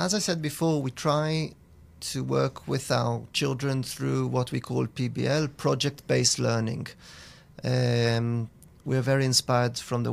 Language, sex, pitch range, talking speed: English, male, 120-155 Hz, 140 wpm